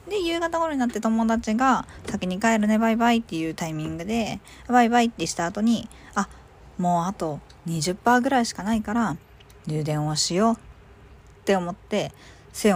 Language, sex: Japanese, female